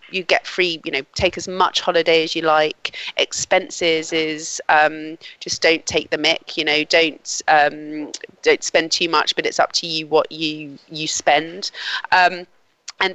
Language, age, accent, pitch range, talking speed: English, 30-49, British, 160-195 Hz, 180 wpm